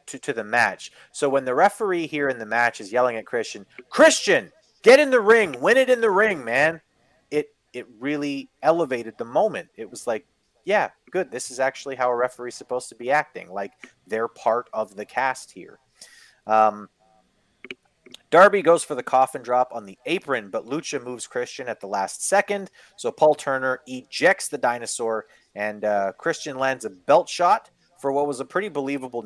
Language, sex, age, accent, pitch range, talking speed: English, male, 30-49, American, 115-155 Hz, 190 wpm